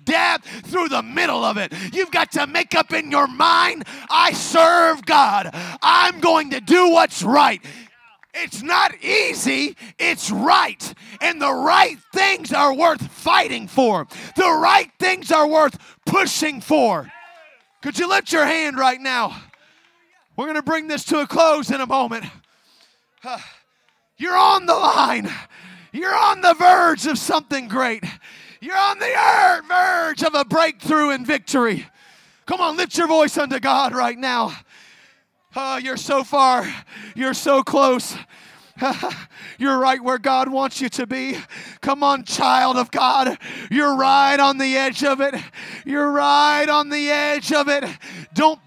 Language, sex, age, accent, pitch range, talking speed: English, male, 30-49, American, 265-330 Hz, 150 wpm